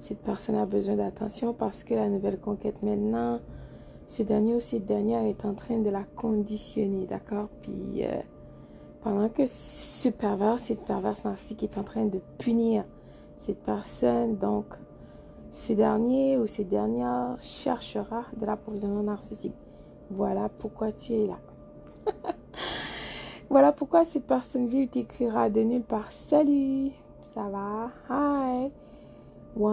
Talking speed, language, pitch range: 140 wpm, French, 205-235 Hz